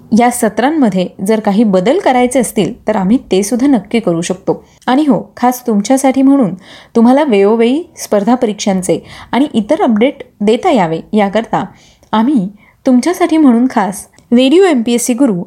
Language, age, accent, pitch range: Marathi, 20-39, native, 210-270 Hz